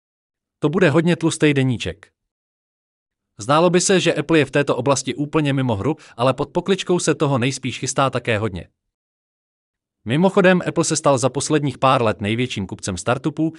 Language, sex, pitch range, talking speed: Czech, male, 110-150 Hz, 165 wpm